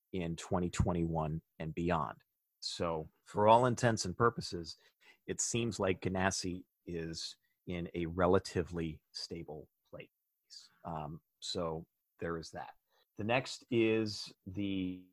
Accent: American